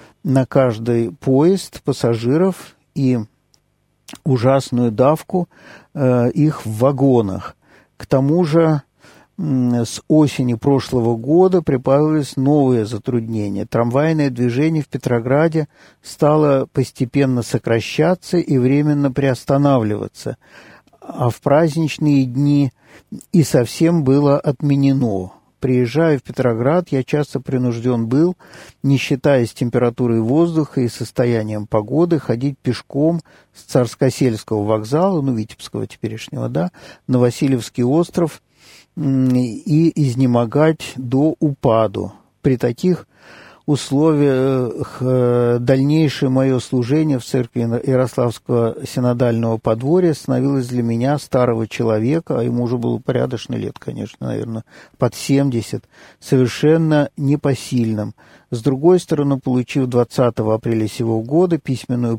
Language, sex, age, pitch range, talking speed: Russian, male, 50-69, 120-145 Hz, 105 wpm